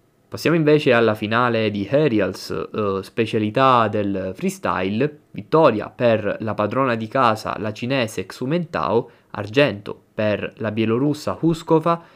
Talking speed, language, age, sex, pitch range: 120 wpm, Italian, 20-39, male, 105-145 Hz